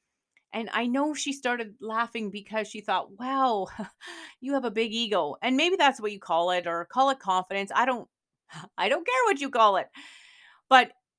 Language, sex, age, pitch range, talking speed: English, female, 30-49, 200-265 Hz, 195 wpm